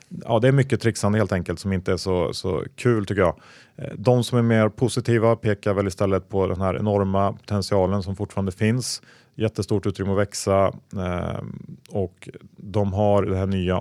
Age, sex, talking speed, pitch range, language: 30-49, male, 180 wpm, 95-110 Hz, Swedish